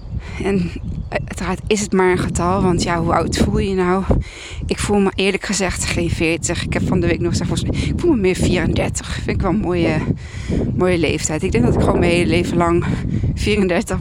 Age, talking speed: 20-39, 225 wpm